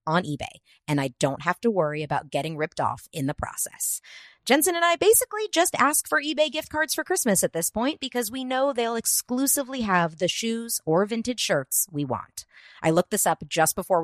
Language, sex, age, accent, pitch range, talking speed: English, female, 30-49, American, 155-250 Hz, 210 wpm